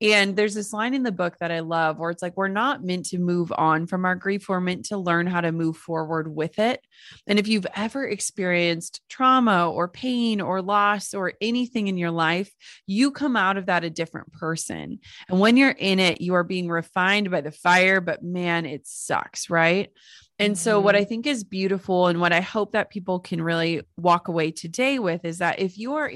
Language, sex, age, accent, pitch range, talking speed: English, female, 30-49, American, 170-205 Hz, 220 wpm